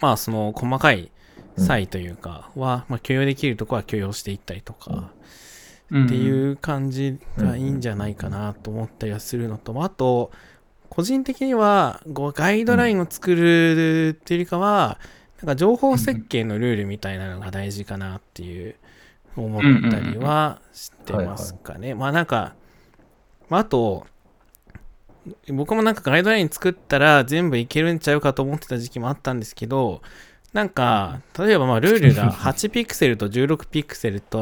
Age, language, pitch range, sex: 20-39, Japanese, 110-170 Hz, male